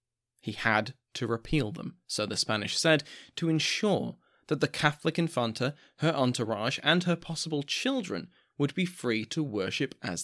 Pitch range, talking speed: 115-145 Hz, 160 wpm